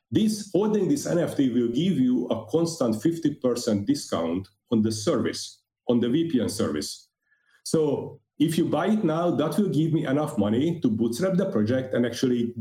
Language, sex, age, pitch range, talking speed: English, male, 40-59, 115-170 Hz, 170 wpm